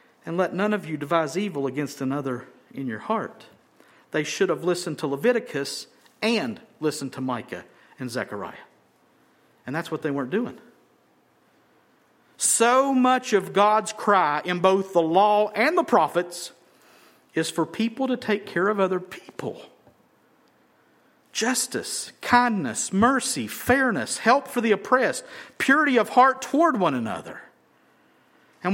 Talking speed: 140 wpm